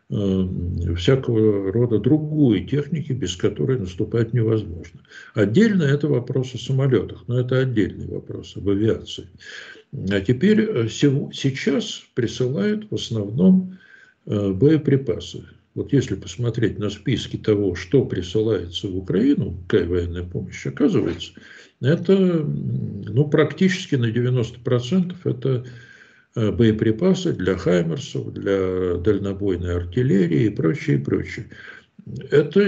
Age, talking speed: 60-79, 105 wpm